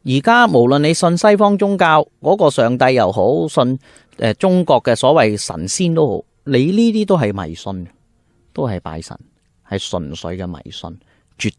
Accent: native